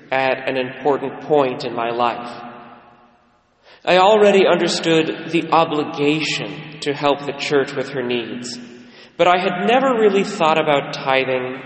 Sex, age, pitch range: male, 30-49, 130-165 Hz